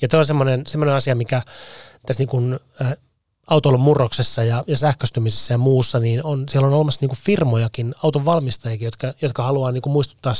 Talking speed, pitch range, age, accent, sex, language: 180 wpm, 120-140 Hz, 30-49, native, male, Finnish